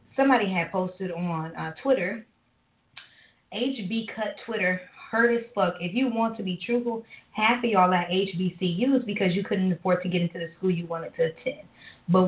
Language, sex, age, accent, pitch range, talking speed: English, female, 20-39, American, 180-235 Hz, 180 wpm